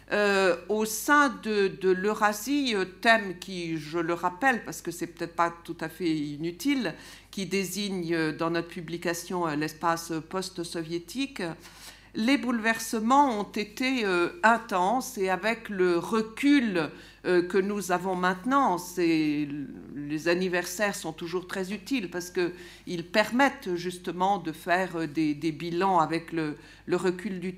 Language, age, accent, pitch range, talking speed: French, 50-69, French, 170-215 Hz, 135 wpm